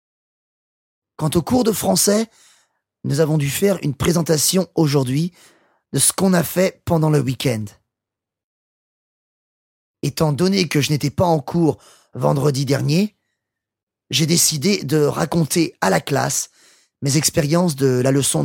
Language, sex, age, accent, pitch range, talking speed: English, male, 30-49, French, 115-175 Hz, 135 wpm